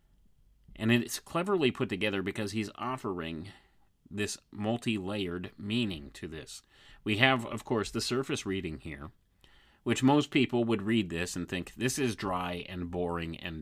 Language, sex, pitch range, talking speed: English, male, 85-115 Hz, 155 wpm